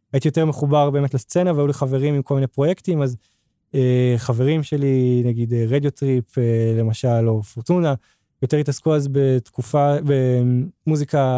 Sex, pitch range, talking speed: male, 125-145 Hz, 150 wpm